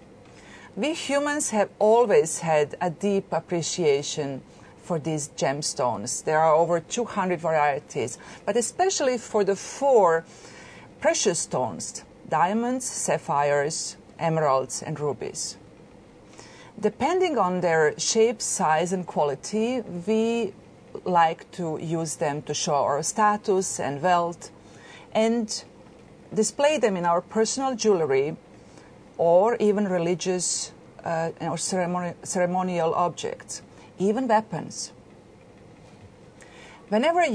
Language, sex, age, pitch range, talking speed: English, female, 40-59, 160-220 Hz, 100 wpm